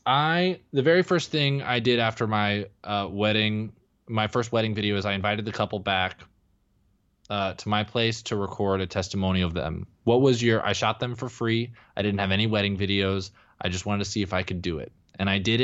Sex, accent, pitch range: male, American, 95-110 Hz